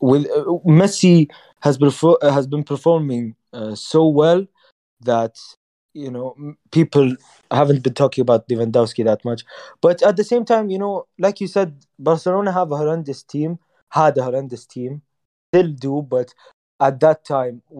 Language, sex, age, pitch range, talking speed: English, male, 20-39, 120-160 Hz, 150 wpm